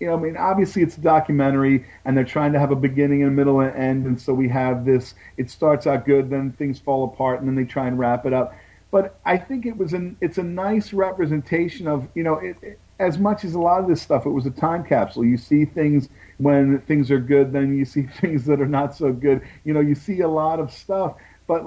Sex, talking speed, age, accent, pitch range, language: male, 260 wpm, 40-59, American, 130-165 Hz, English